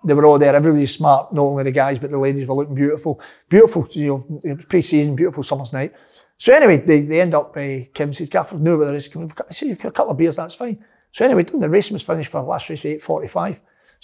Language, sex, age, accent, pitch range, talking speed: English, male, 40-59, British, 140-160 Hz, 250 wpm